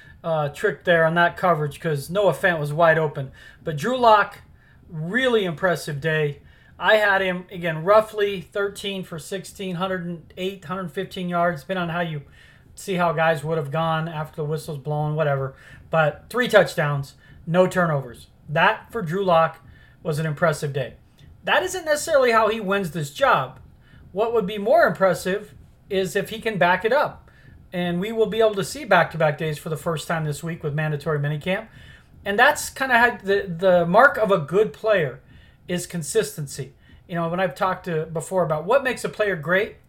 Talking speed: 185 wpm